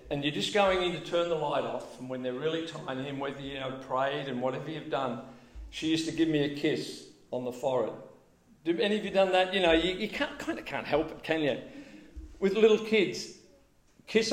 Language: English